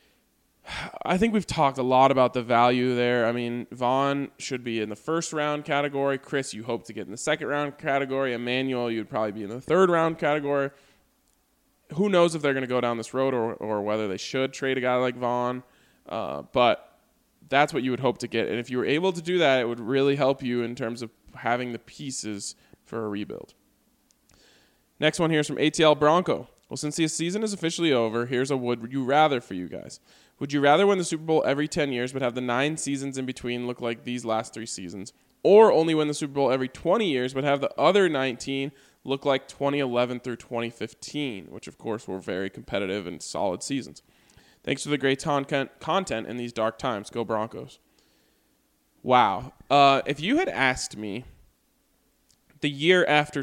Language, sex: English, male